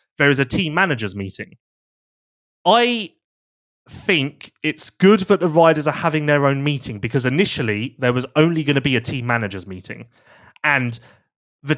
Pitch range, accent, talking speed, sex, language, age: 120-165 Hz, British, 165 wpm, male, English, 30-49